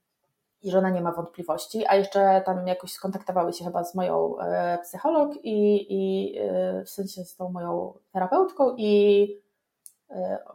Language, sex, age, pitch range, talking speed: Polish, female, 20-39, 185-225 Hz, 165 wpm